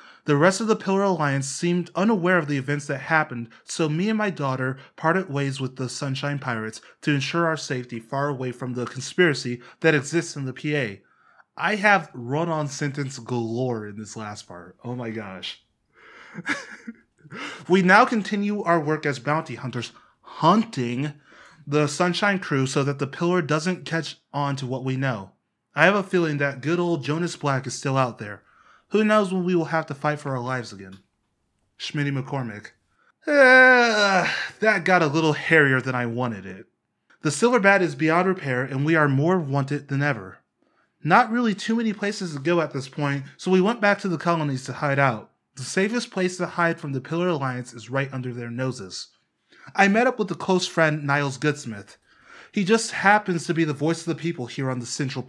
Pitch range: 130-180 Hz